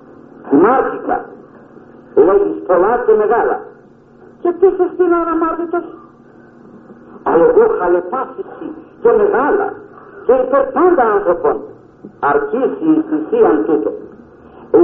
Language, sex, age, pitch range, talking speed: Greek, male, 50-69, 305-425 Hz, 90 wpm